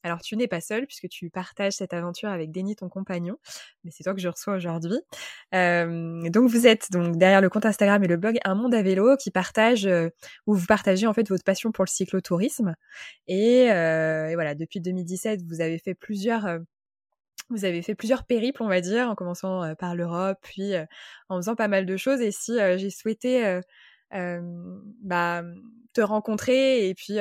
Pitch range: 180-220 Hz